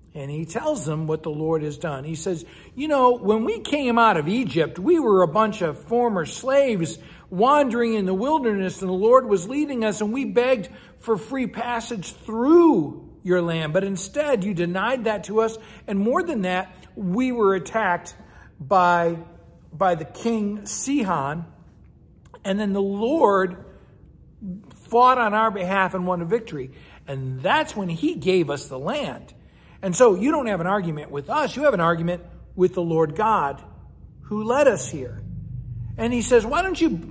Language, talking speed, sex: English, 175 wpm, male